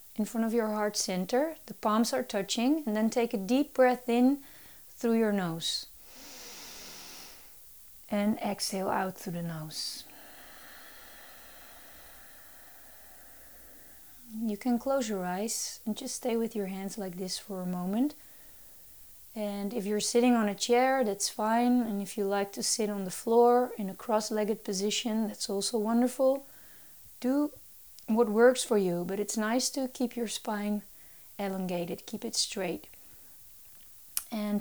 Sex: female